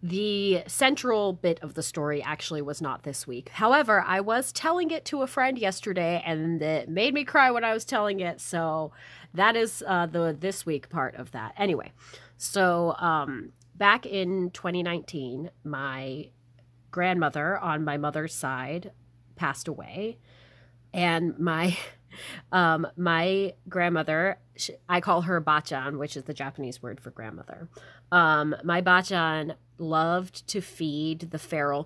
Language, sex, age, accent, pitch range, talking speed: English, female, 30-49, American, 145-185 Hz, 150 wpm